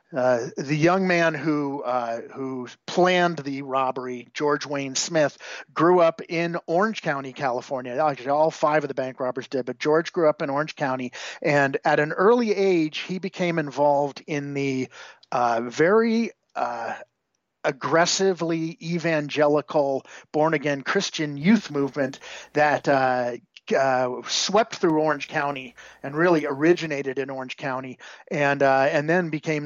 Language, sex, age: English, male, 50-69